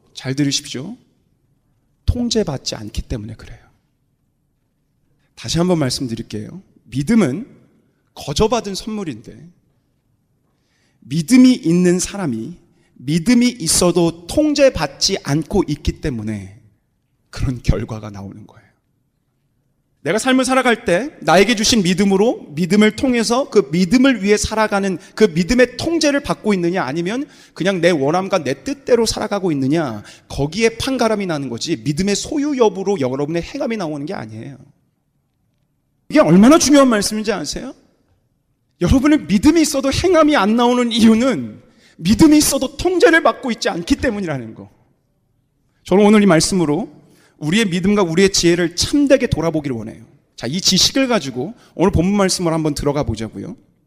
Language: Korean